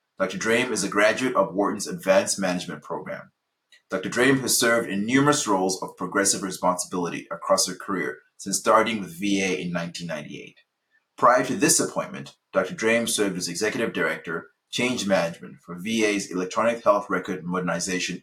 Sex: male